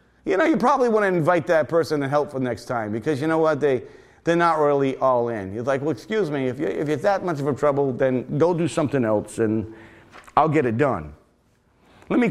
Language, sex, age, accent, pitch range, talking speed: English, male, 40-59, American, 130-175 Hz, 250 wpm